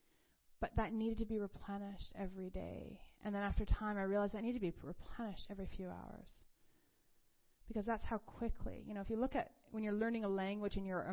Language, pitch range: English, 190-225 Hz